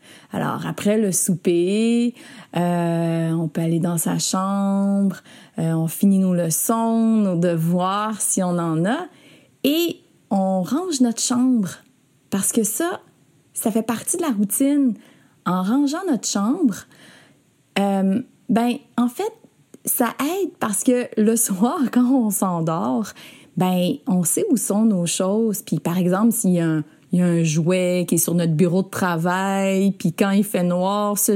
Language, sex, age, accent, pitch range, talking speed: French, female, 30-49, Canadian, 175-240 Hz, 165 wpm